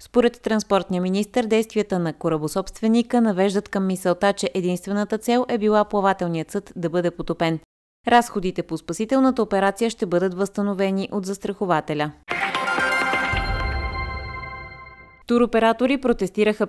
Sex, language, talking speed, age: female, Bulgarian, 110 wpm, 20-39